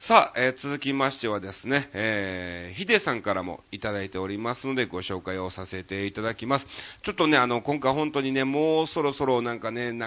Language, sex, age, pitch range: Japanese, male, 40-59, 105-140 Hz